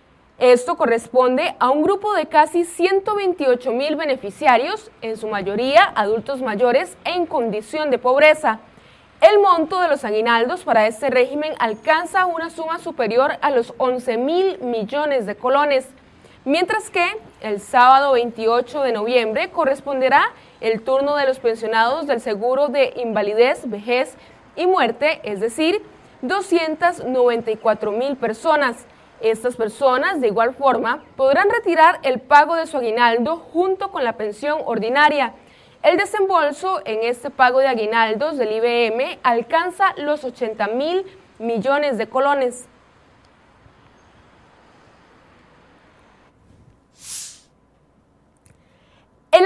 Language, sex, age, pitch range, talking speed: Spanish, female, 20-39, 235-330 Hz, 120 wpm